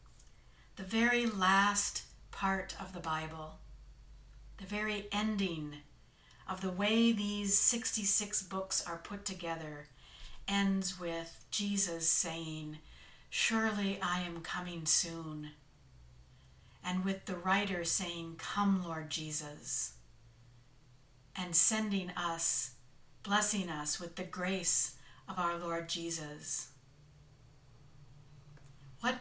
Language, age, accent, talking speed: English, 50-69, American, 100 wpm